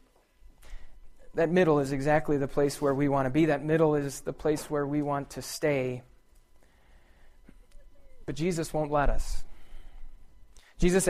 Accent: American